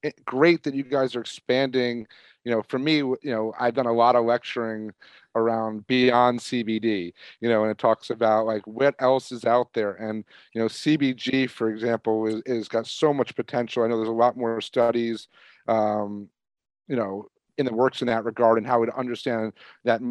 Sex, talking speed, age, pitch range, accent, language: male, 210 wpm, 40-59, 115-130 Hz, American, English